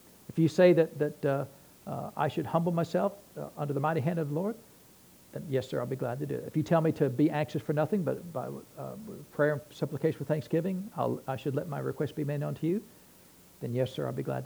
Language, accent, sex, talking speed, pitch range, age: English, American, male, 255 wpm, 135-160 Hz, 60-79